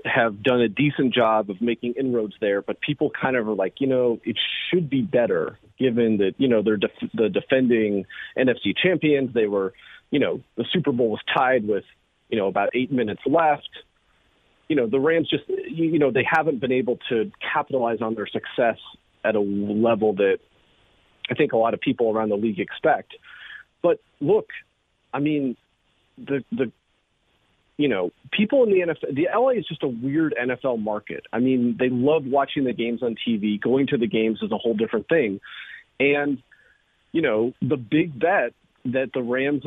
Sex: male